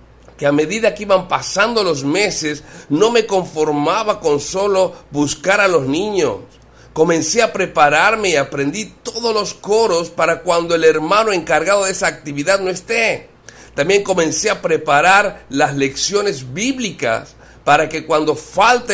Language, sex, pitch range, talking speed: Spanish, male, 155-210 Hz, 145 wpm